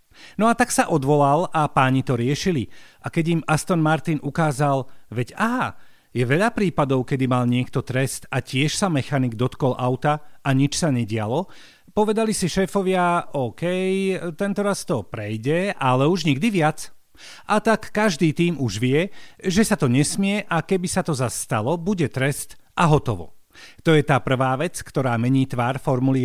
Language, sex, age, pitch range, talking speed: Slovak, male, 40-59, 135-185 Hz, 165 wpm